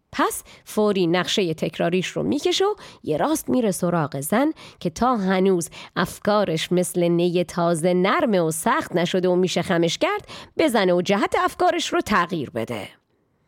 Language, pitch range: Persian, 180-260 Hz